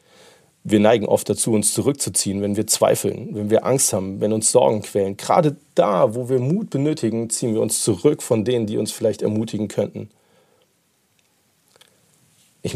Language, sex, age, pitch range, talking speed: German, male, 40-59, 105-140 Hz, 165 wpm